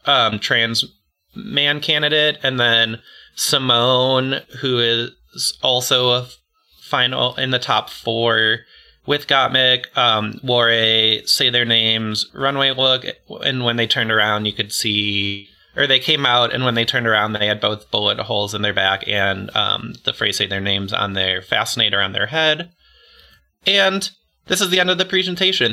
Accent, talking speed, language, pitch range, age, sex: American, 165 wpm, English, 105-135 Hz, 20-39, male